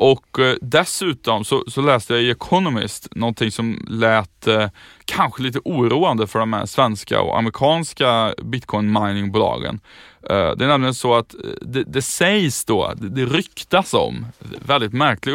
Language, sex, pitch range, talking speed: Swedish, male, 105-135 Hz, 150 wpm